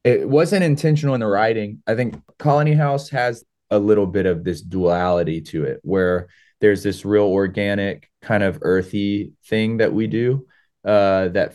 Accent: American